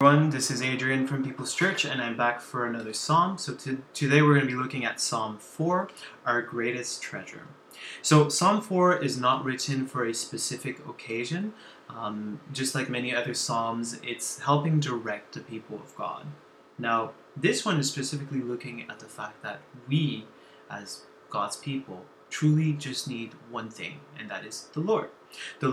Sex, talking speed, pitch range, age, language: male, 175 wpm, 115-145 Hz, 20-39, English